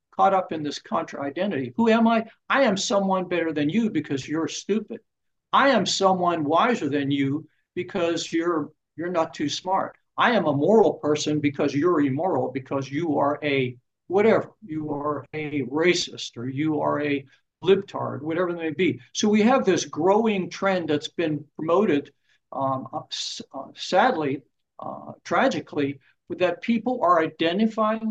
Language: English